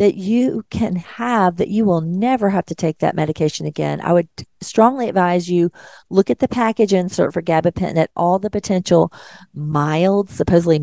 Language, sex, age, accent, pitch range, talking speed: English, female, 40-59, American, 165-205 Hz, 175 wpm